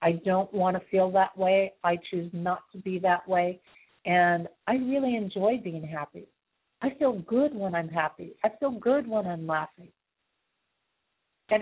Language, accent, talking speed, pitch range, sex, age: English, American, 170 wpm, 170-205 Hz, female, 50-69